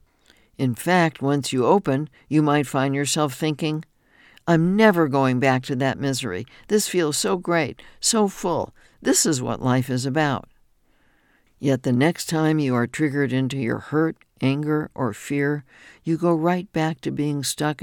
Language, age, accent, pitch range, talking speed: English, 60-79, American, 125-155 Hz, 165 wpm